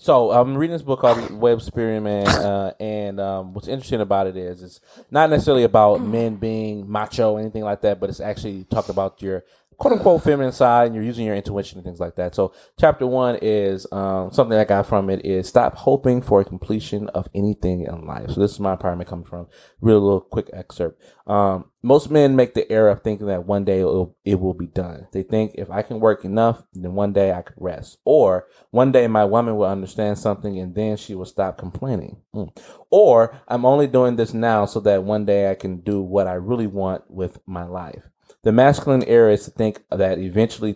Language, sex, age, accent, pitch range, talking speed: English, male, 20-39, American, 95-110 Hz, 225 wpm